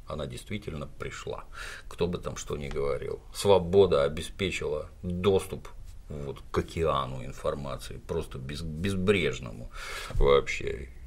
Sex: male